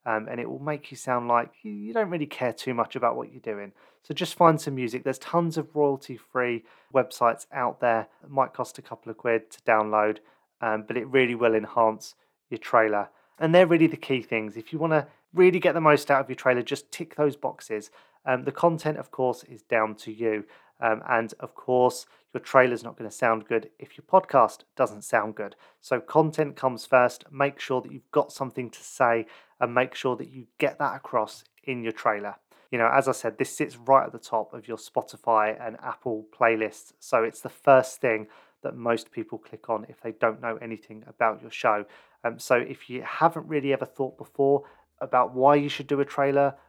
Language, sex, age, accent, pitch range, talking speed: English, male, 30-49, British, 115-140 Hz, 220 wpm